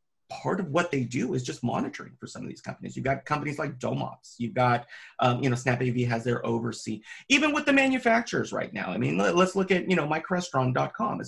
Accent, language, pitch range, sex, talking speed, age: American, English, 125-175 Hz, male, 220 wpm, 30-49